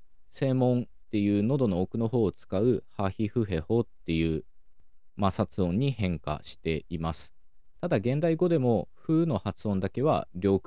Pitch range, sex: 85-120 Hz, male